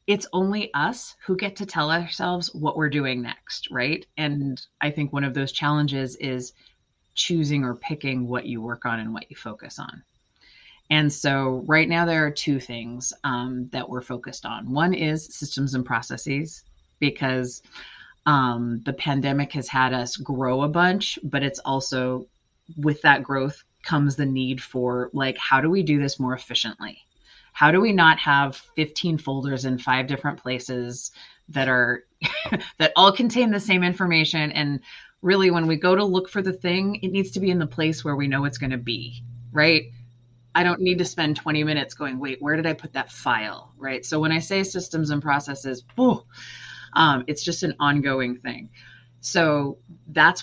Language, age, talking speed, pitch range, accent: English, 30-49, 185 wpm, 125-160 Hz, American